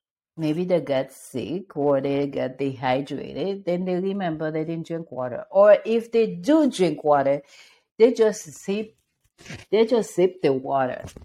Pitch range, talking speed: 135-190 Hz, 145 wpm